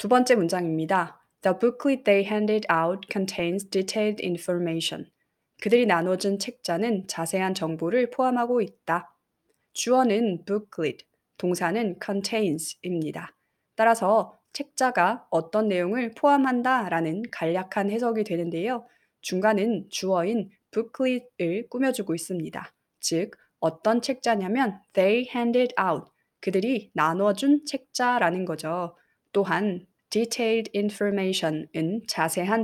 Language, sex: Korean, female